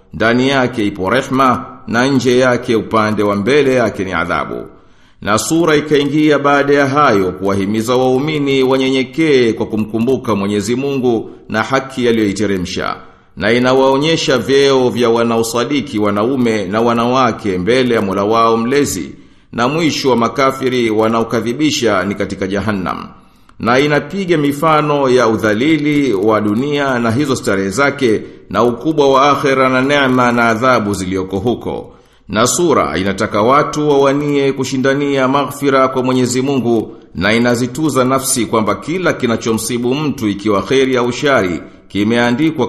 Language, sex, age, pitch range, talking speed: Swahili, male, 50-69, 110-135 Hz, 130 wpm